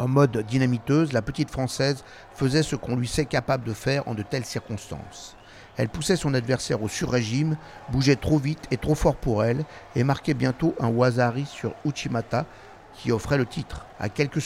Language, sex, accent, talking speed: French, male, French, 185 wpm